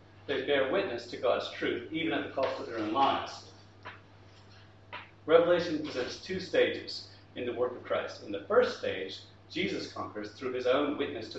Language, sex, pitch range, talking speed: English, male, 100-140 Hz, 180 wpm